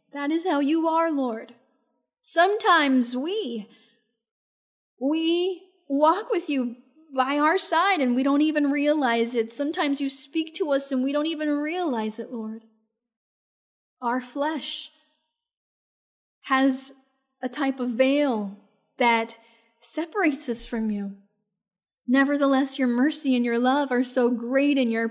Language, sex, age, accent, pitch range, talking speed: English, female, 10-29, American, 255-315 Hz, 135 wpm